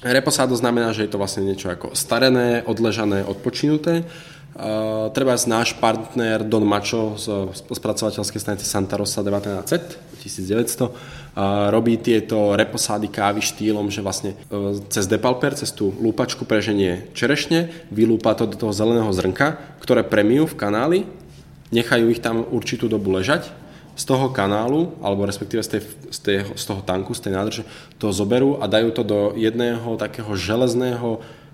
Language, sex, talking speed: Czech, male, 145 wpm